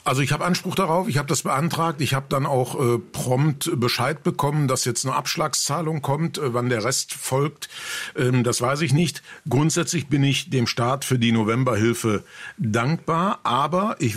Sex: male